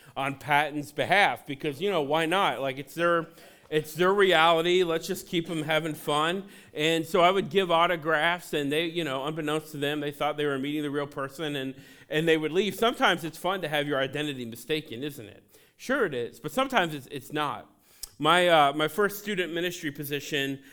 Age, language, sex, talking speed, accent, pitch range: 40-59, English, male, 205 wpm, American, 140-165 Hz